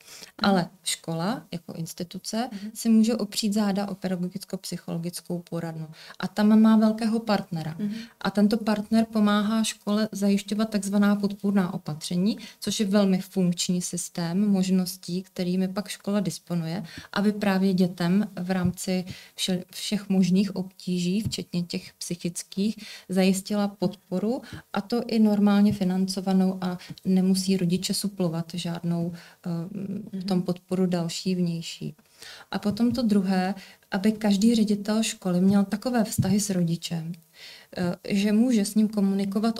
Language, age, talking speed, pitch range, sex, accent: Czech, 30-49, 125 wpm, 180-210 Hz, female, native